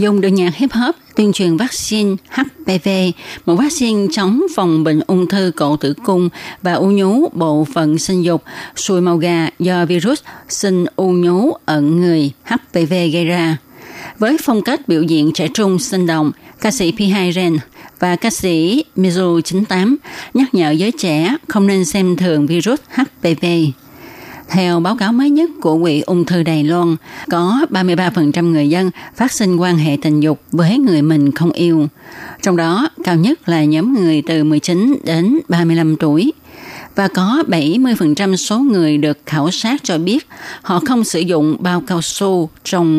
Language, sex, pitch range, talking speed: Vietnamese, female, 160-215 Hz, 170 wpm